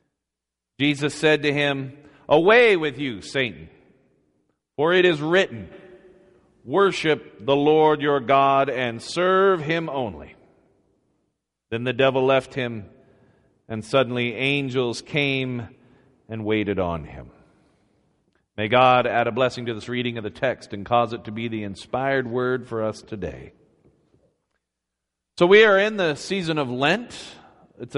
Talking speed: 140 wpm